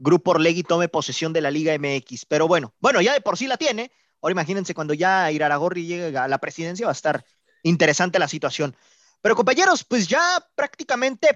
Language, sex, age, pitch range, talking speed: Spanish, male, 30-49, 170-235 Hz, 195 wpm